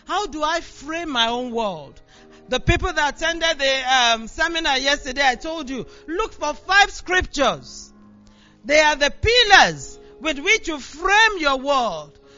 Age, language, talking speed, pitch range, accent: 40-59, English, 155 wpm, 260-365 Hz, Nigerian